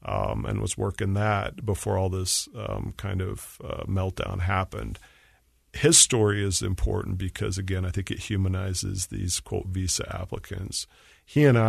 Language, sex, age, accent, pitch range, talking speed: English, male, 40-59, American, 95-105 Hz, 155 wpm